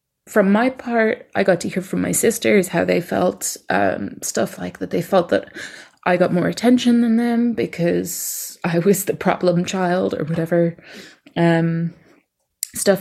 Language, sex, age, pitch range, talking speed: English, female, 20-39, 165-205 Hz, 165 wpm